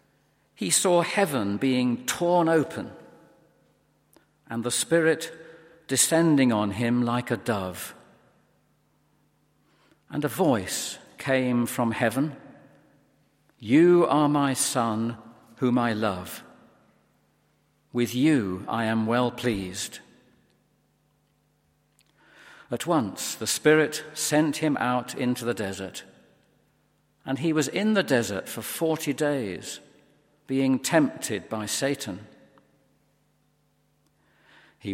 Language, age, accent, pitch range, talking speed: English, 50-69, British, 115-150 Hz, 100 wpm